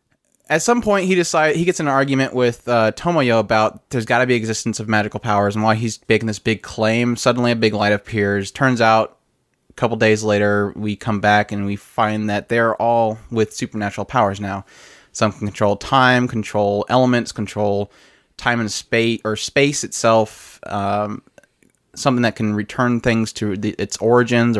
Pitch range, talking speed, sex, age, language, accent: 110-125 Hz, 185 wpm, male, 20-39, English, American